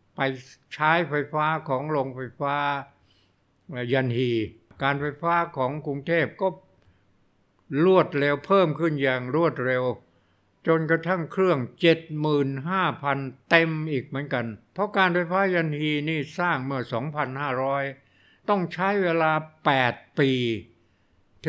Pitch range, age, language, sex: 125-155 Hz, 60-79, Thai, male